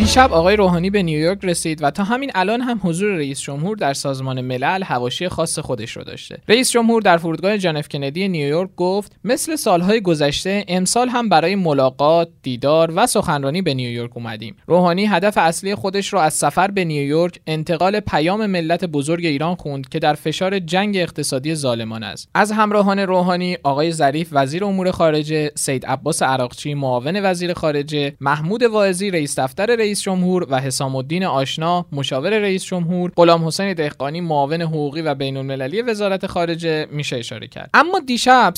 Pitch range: 145-200 Hz